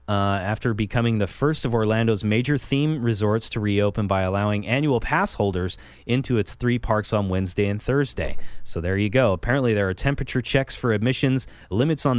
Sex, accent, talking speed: male, American, 185 wpm